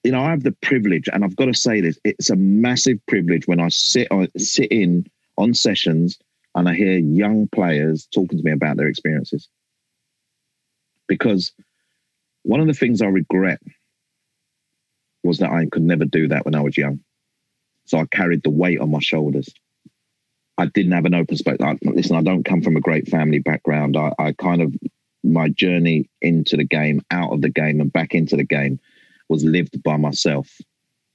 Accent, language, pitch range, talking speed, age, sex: British, English, 75-95 Hz, 190 wpm, 30-49, male